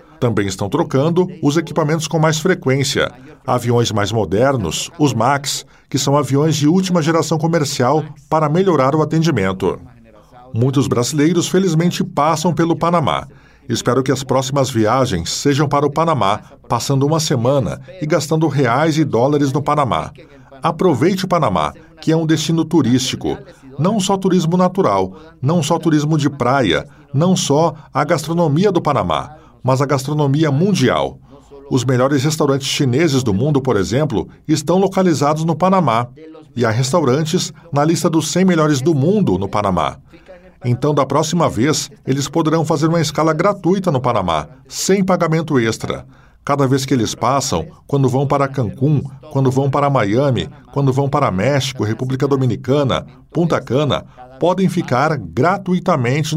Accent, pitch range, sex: Brazilian, 130-165 Hz, male